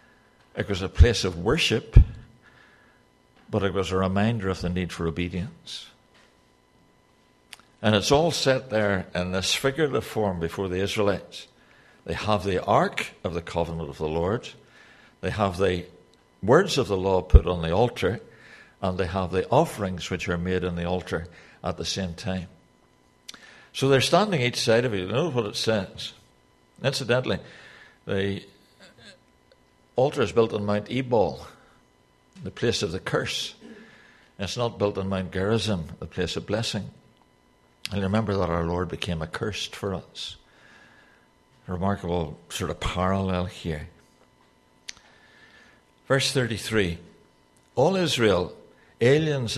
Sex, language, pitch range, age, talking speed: male, English, 85-105 Hz, 60-79, 140 wpm